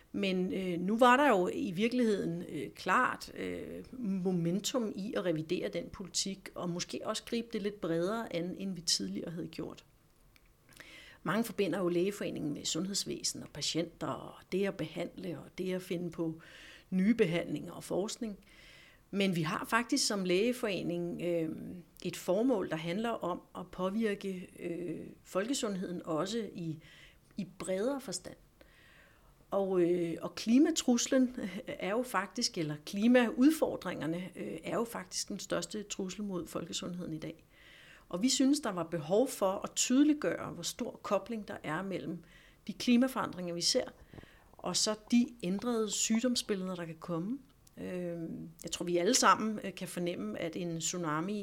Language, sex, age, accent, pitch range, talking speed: Danish, female, 60-79, native, 170-215 Hz, 145 wpm